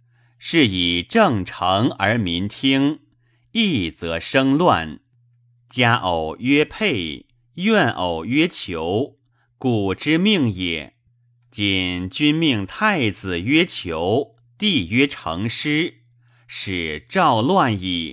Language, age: Chinese, 30-49